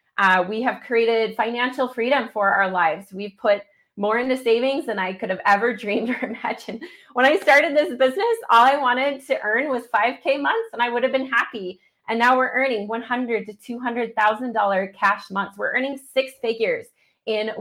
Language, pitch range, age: English, 195-255 Hz, 30-49